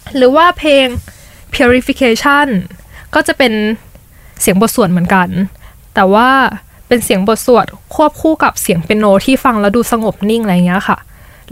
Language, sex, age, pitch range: Thai, female, 10-29, 195-255 Hz